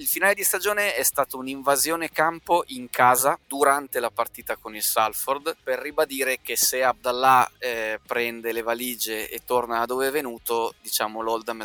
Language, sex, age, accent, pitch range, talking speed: Italian, male, 20-39, native, 120-155 Hz, 170 wpm